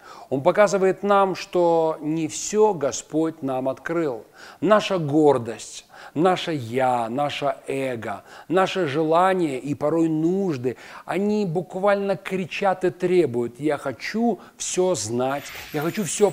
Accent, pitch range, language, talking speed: native, 145-190 Hz, Russian, 120 wpm